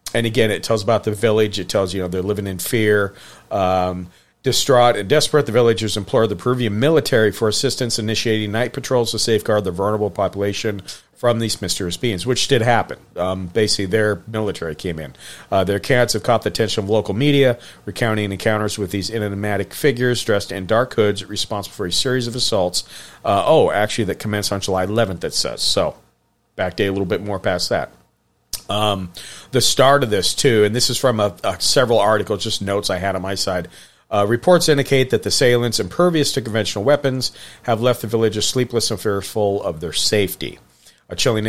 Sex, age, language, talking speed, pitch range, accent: male, 40-59, English, 195 wpm, 100-115 Hz, American